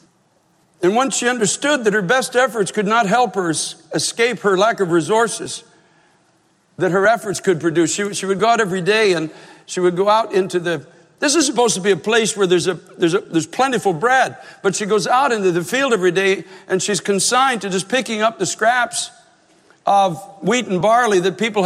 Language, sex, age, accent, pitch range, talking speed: English, male, 60-79, American, 195-280 Hz, 210 wpm